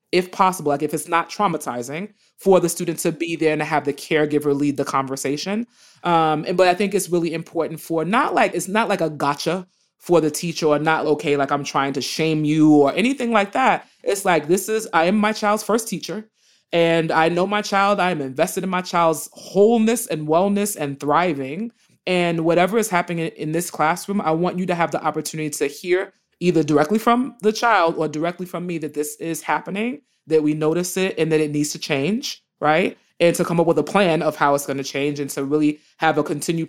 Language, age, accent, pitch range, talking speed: English, 30-49, American, 150-195 Hz, 220 wpm